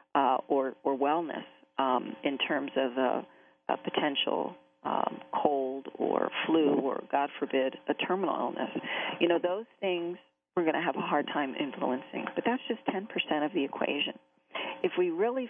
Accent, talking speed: American, 165 wpm